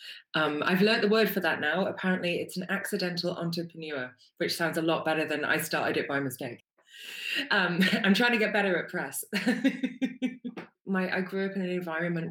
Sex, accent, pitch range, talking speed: female, British, 150-195 Hz, 190 wpm